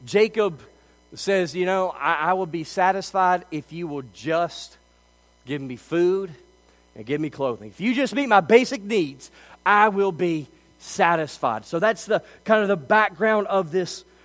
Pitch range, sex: 155-230 Hz, male